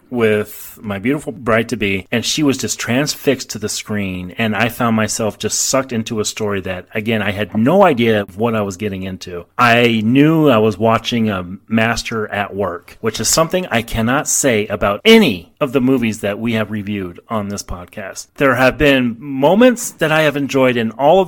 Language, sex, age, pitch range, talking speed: English, male, 30-49, 110-140 Hz, 200 wpm